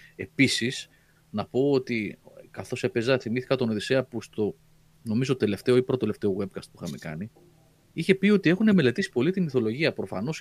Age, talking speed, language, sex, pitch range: 30-49, 165 wpm, Greek, male, 110-160 Hz